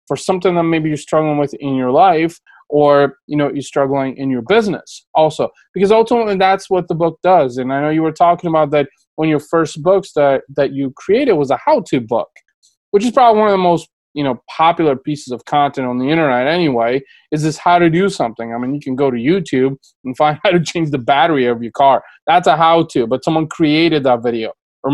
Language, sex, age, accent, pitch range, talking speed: English, male, 20-39, American, 135-170 Hz, 230 wpm